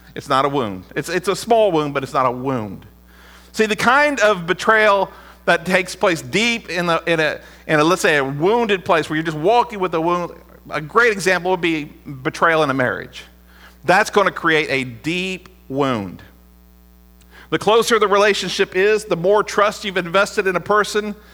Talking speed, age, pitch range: 190 wpm, 50-69, 145-205 Hz